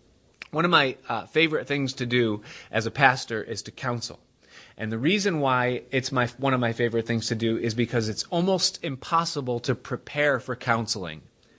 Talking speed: 185 wpm